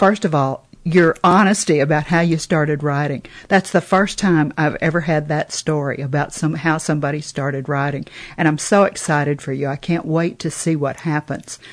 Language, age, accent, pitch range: English, 50-69, American, 145-175 Hz